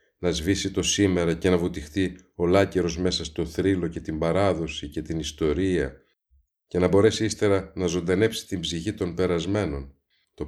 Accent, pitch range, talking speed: native, 75-95 Hz, 160 wpm